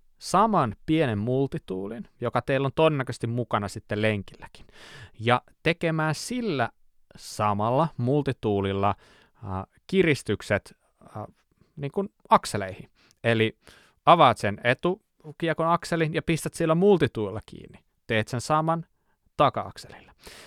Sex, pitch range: male, 105-160 Hz